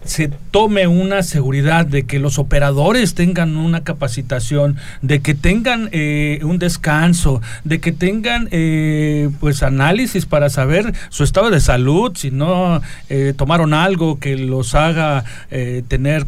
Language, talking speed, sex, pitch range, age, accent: Spanish, 145 wpm, male, 145-190 Hz, 40-59, Mexican